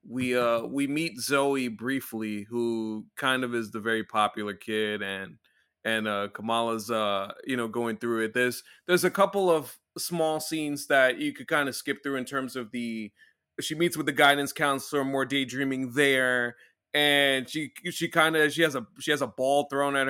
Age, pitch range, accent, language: 30-49, 120-150 Hz, American, English